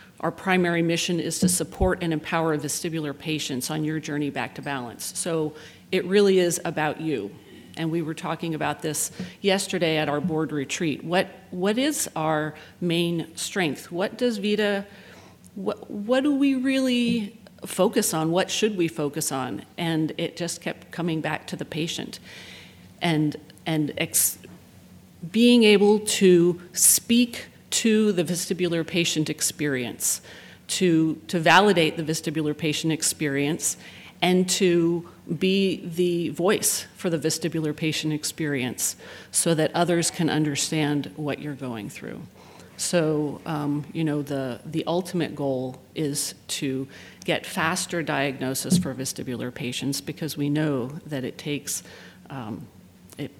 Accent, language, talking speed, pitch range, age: American, English, 140 wpm, 150-180 Hz, 40-59